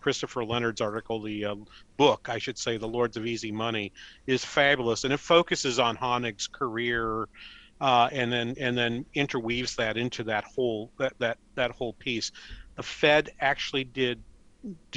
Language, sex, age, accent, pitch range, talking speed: English, male, 40-59, American, 115-140 Hz, 165 wpm